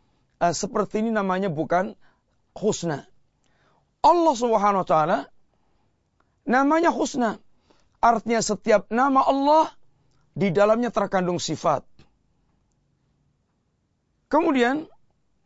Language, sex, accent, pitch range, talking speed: Indonesian, male, native, 185-230 Hz, 75 wpm